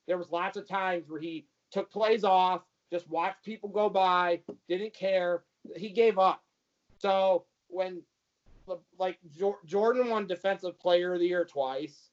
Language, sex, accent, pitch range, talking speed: English, male, American, 165-190 Hz, 155 wpm